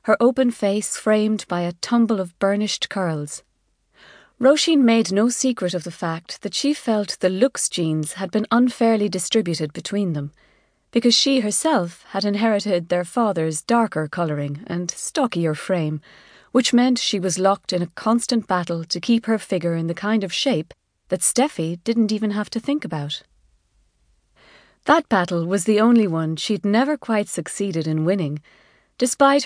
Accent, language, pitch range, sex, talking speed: Irish, English, 165-220 Hz, female, 165 wpm